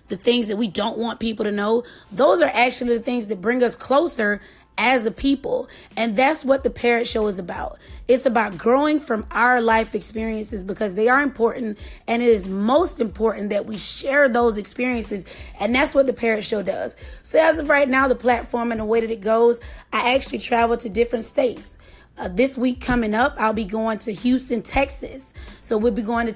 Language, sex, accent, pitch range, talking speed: English, female, American, 215-255 Hz, 210 wpm